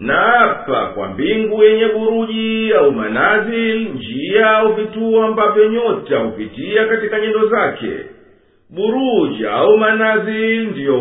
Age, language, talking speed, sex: 50-69, Swahili, 100 wpm, male